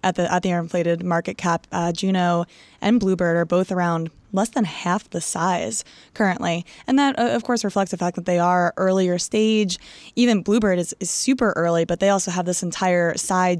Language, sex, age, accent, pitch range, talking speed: English, female, 20-39, American, 175-210 Hz, 200 wpm